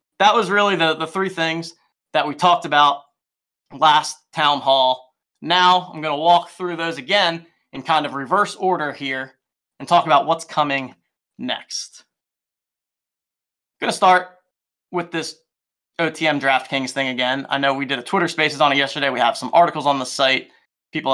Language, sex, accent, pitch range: English, male, American, 135-170 Hz